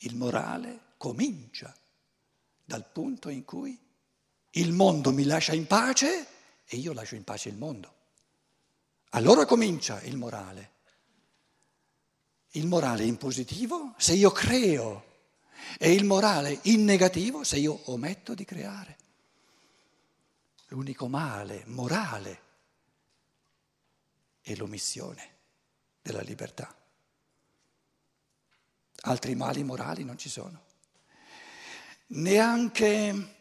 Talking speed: 100 wpm